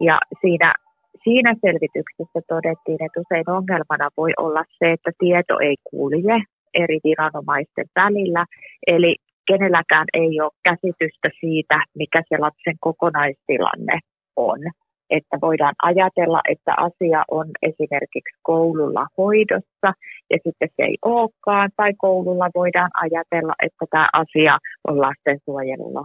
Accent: native